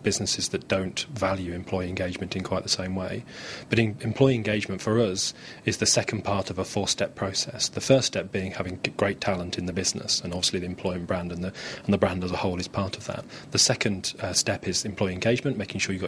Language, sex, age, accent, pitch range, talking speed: English, male, 30-49, British, 95-110 Hz, 235 wpm